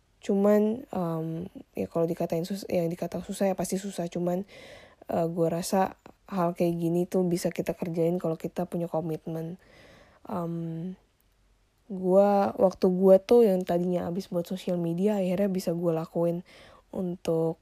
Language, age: English, 10-29